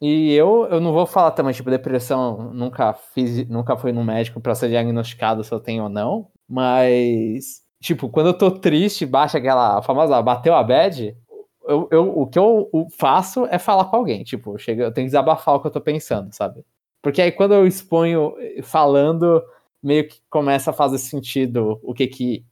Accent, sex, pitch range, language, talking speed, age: Brazilian, male, 120-160 Hz, Portuguese, 195 wpm, 20-39